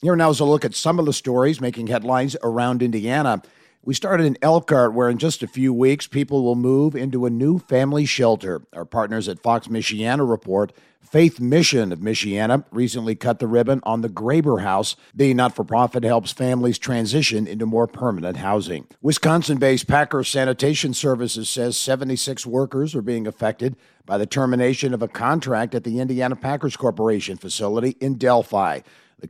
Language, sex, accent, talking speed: English, male, American, 170 wpm